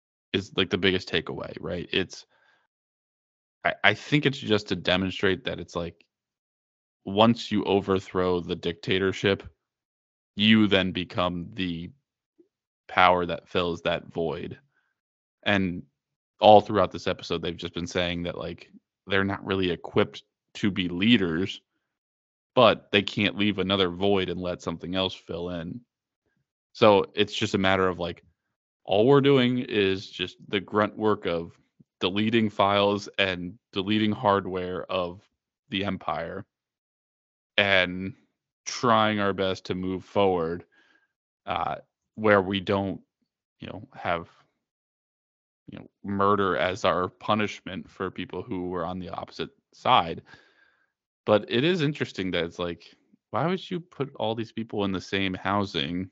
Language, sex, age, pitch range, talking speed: English, male, 20-39, 90-105 Hz, 140 wpm